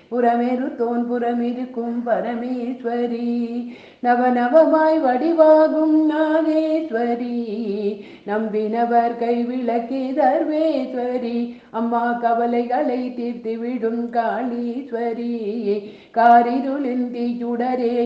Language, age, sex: Tamil, 50-69, female